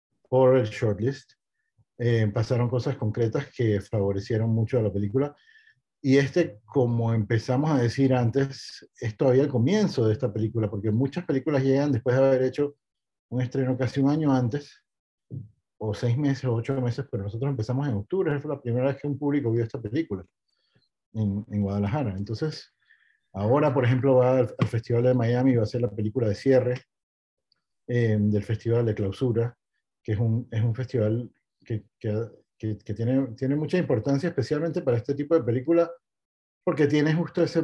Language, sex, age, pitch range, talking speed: Spanish, male, 40-59, 110-135 Hz, 180 wpm